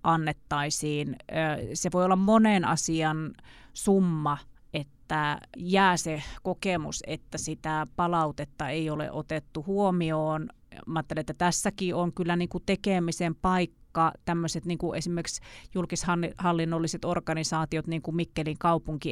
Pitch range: 155-180 Hz